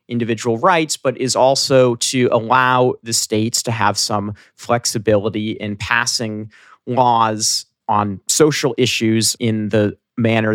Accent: American